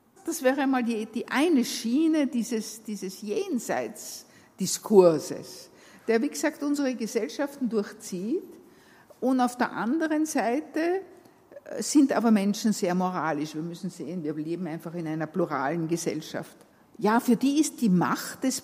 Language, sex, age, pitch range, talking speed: German, female, 60-79, 175-255 Hz, 140 wpm